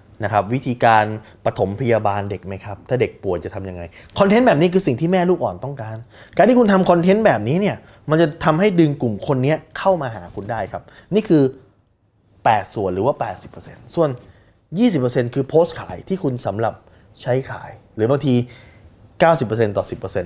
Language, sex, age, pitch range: Thai, male, 20-39, 105-155 Hz